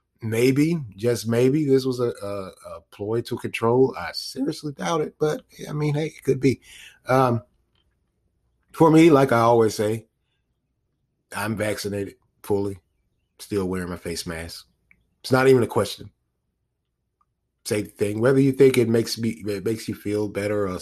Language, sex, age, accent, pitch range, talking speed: English, male, 30-49, American, 95-120 Hz, 160 wpm